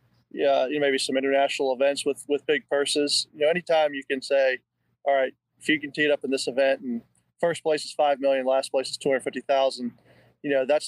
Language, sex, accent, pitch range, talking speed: English, male, American, 130-140 Hz, 225 wpm